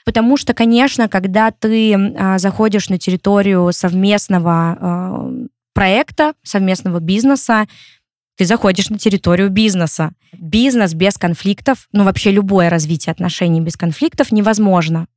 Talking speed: 110 wpm